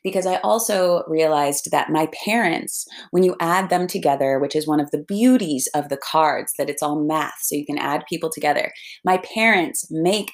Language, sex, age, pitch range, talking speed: English, female, 30-49, 140-170 Hz, 195 wpm